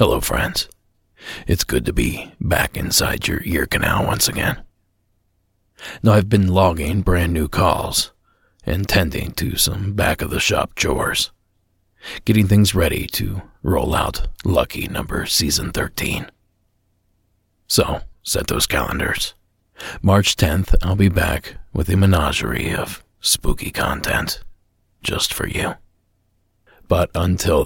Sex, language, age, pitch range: male, English, 40-59, 90-100 Hz